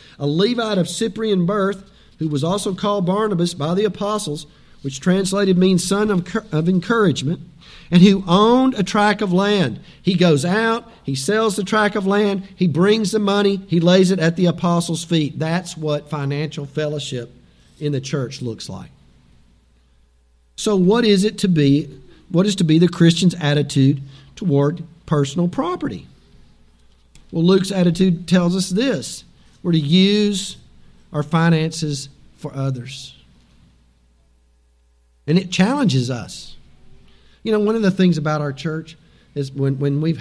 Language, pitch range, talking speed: English, 135-190 Hz, 150 wpm